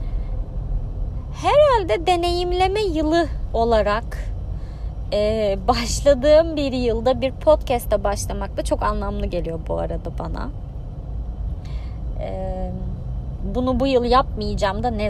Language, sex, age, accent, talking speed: Turkish, female, 30-49, native, 100 wpm